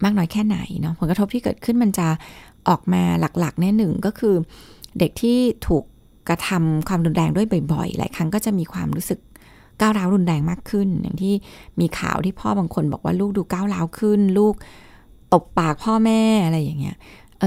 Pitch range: 160-200 Hz